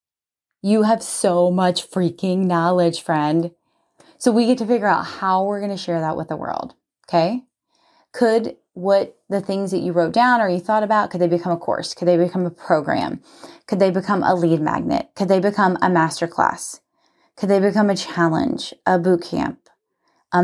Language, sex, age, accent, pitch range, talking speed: English, female, 20-39, American, 180-240 Hz, 190 wpm